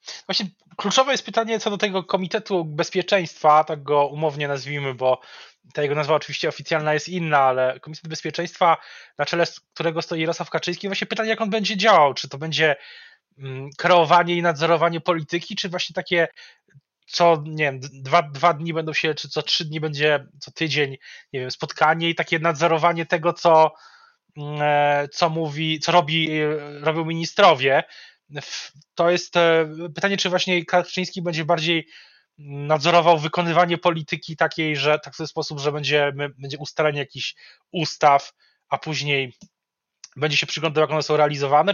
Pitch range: 150-180 Hz